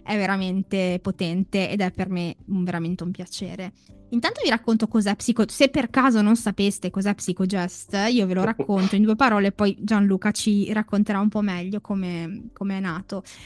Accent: native